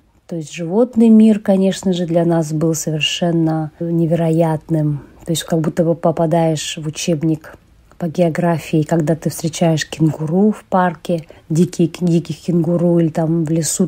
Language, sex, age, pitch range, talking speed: Russian, female, 30-49, 160-190 Hz, 145 wpm